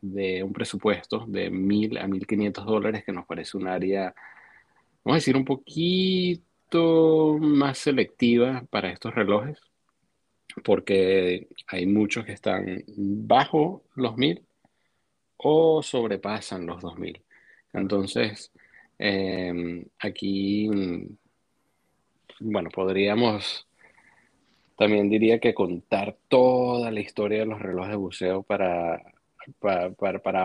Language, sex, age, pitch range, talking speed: Spanish, male, 30-49, 95-115 Hz, 110 wpm